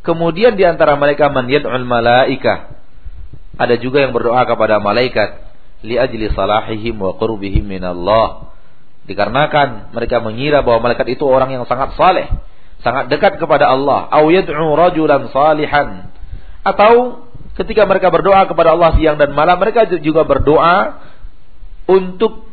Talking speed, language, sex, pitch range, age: 130 wpm, Malay, male, 110-155 Hz, 40-59